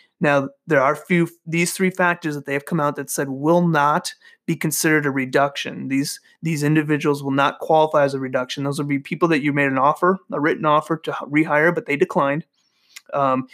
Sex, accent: male, American